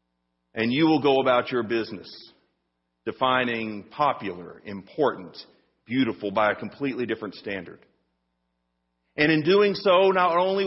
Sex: male